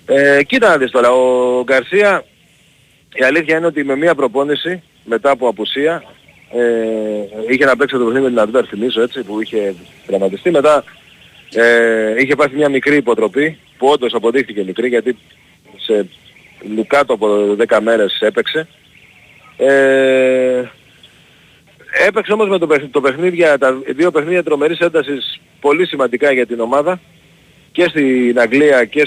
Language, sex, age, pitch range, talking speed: Greek, male, 40-59, 120-155 Hz, 140 wpm